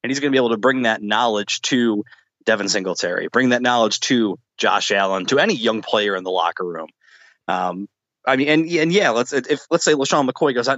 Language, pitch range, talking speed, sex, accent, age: English, 105-130 Hz, 230 wpm, male, American, 20-39